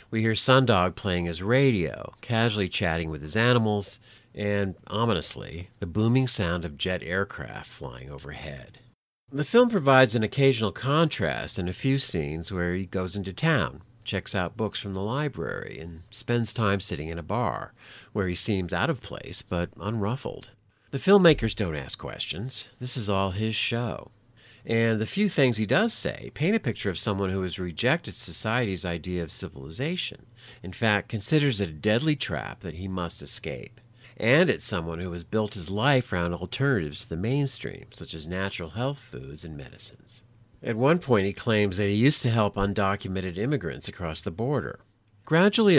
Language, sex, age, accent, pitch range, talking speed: English, male, 50-69, American, 90-120 Hz, 175 wpm